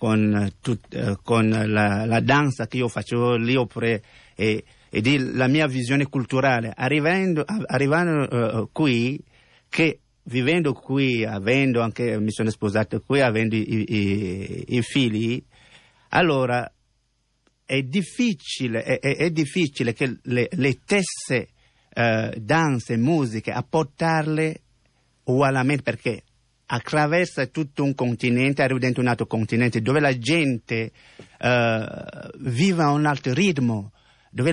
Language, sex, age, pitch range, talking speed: Italian, male, 50-69, 115-145 Hz, 125 wpm